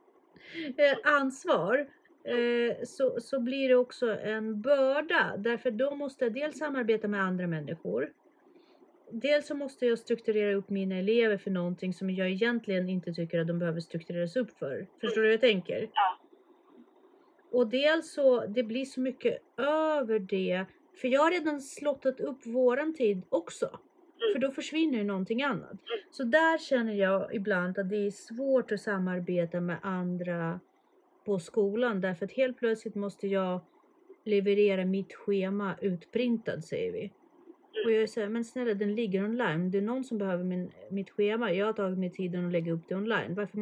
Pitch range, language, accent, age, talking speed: 190-275 Hz, Swedish, native, 30-49, 170 wpm